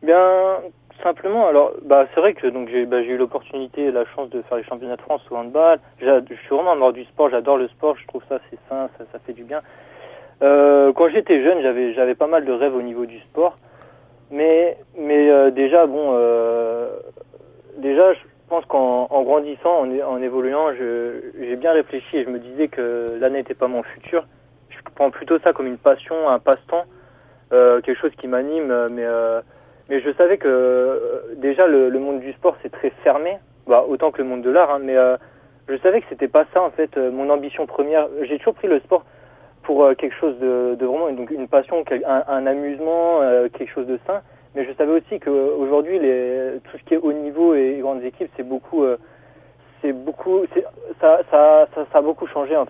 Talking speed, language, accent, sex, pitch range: 215 wpm, French, French, male, 125-155 Hz